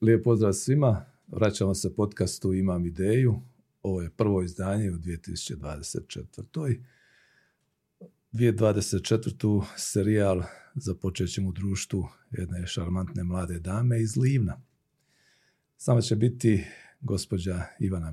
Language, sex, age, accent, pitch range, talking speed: Croatian, male, 40-59, native, 95-115 Hz, 100 wpm